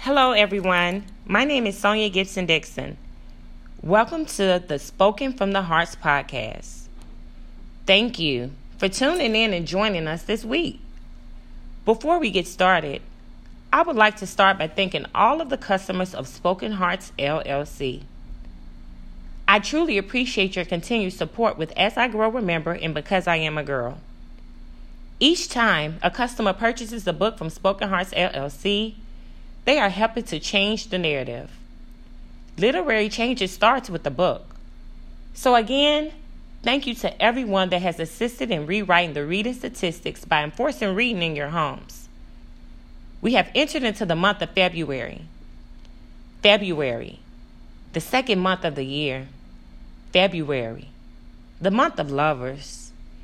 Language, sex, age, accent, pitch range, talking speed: English, female, 30-49, American, 135-215 Hz, 140 wpm